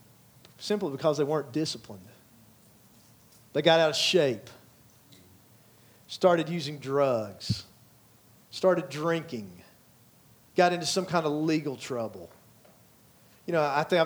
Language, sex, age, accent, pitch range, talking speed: English, male, 40-59, American, 150-200 Hz, 115 wpm